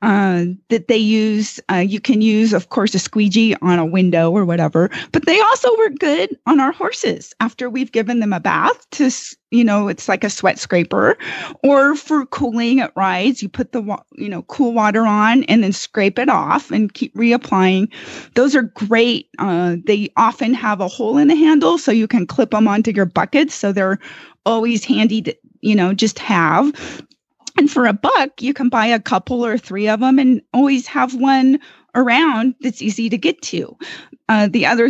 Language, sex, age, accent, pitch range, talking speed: English, female, 30-49, American, 215-275 Hz, 200 wpm